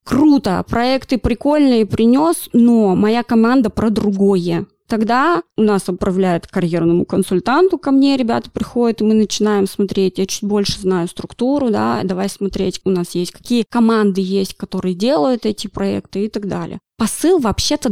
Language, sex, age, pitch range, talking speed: Russian, female, 20-39, 195-235 Hz, 155 wpm